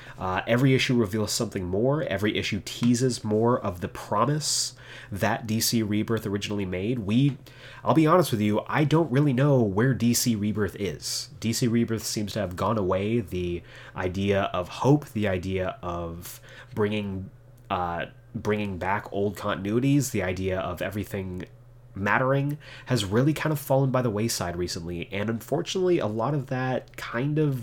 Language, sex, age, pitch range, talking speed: English, male, 30-49, 100-130 Hz, 160 wpm